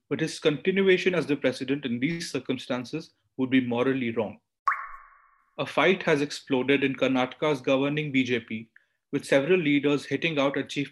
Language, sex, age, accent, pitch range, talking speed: English, male, 30-49, Indian, 130-155 Hz, 155 wpm